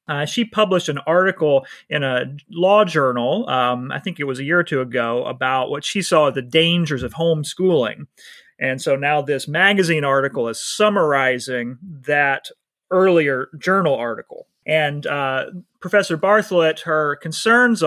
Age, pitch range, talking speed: 30-49, 130-165 Hz, 155 wpm